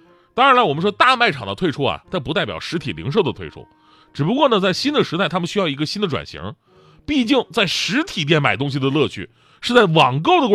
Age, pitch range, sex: 30-49, 140-225 Hz, male